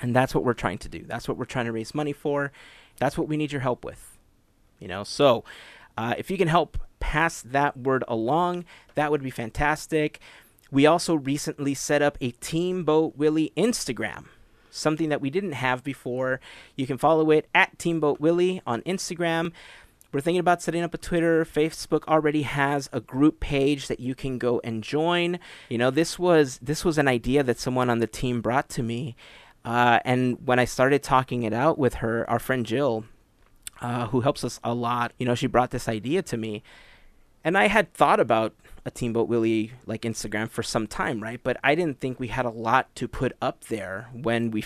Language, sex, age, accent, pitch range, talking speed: English, male, 30-49, American, 120-155 Hz, 210 wpm